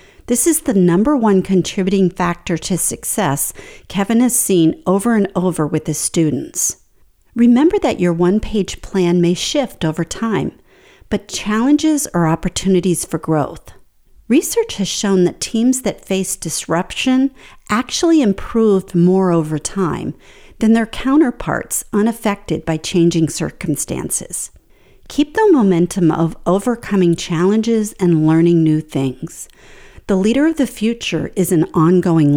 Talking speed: 130 wpm